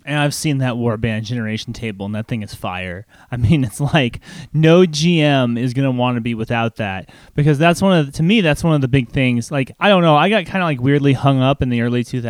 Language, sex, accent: English, male, American